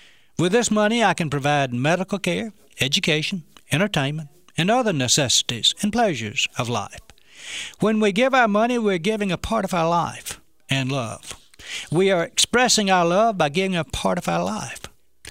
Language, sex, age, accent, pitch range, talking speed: English, male, 60-79, American, 125-180 Hz, 170 wpm